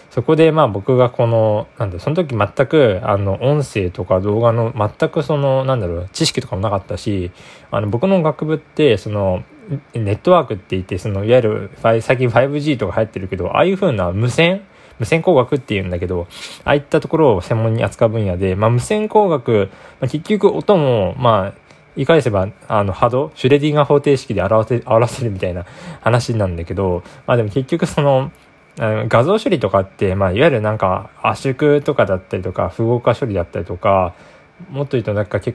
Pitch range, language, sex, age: 100-150 Hz, Japanese, male, 20-39